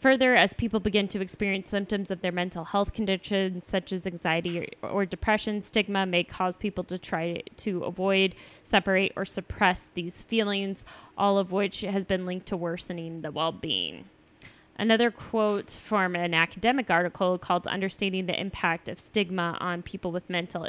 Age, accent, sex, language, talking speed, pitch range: 10-29, American, female, English, 165 wpm, 175-205 Hz